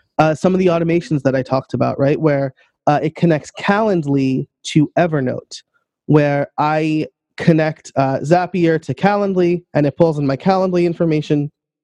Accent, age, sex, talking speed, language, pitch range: American, 30-49, male, 155 wpm, English, 140-175 Hz